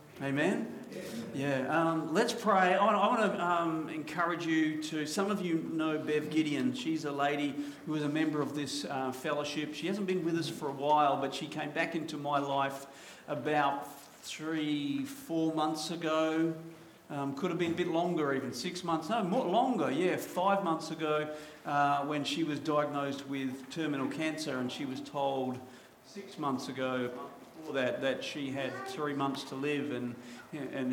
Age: 50-69